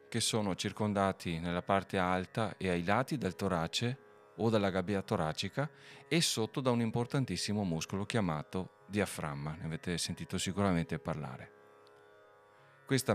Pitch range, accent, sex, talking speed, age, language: 85-110 Hz, native, male, 130 wpm, 40-59, Italian